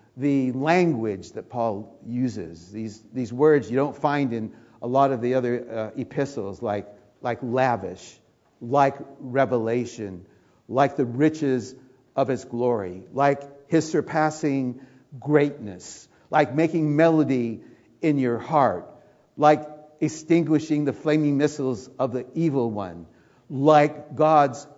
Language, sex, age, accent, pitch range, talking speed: English, male, 60-79, American, 120-155 Hz, 125 wpm